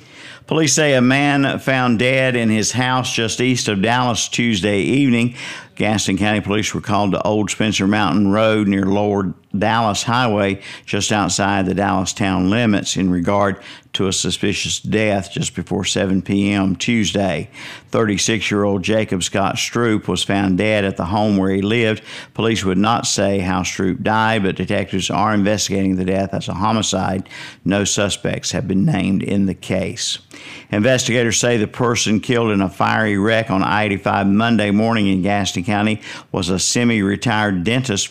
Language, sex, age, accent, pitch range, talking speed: English, male, 50-69, American, 95-110 Hz, 165 wpm